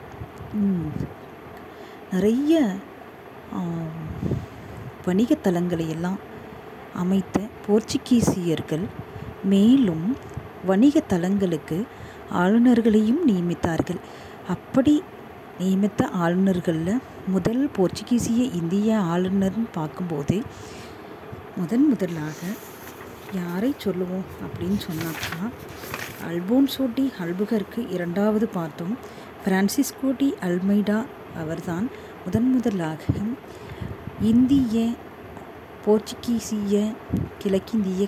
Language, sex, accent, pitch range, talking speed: Tamil, female, native, 175-230 Hz, 60 wpm